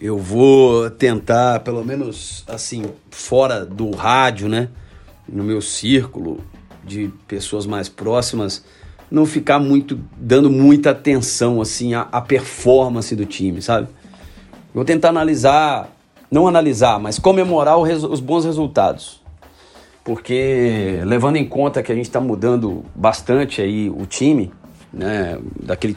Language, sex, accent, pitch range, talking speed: Portuguese, male, Brazilian, 105-140 Hz, 130 wpm